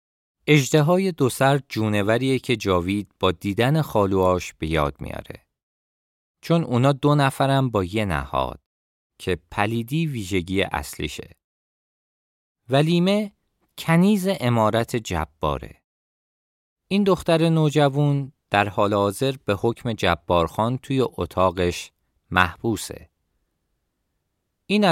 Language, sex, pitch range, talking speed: Persian, male, 85-135 Hz, 100 wpm